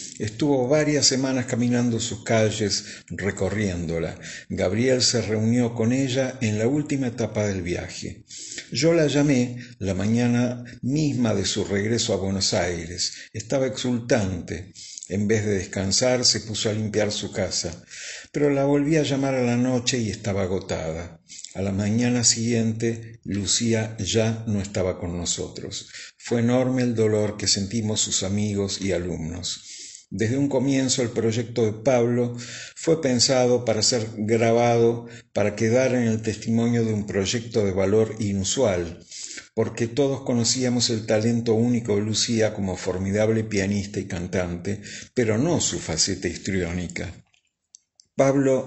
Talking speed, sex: 140 wpm, male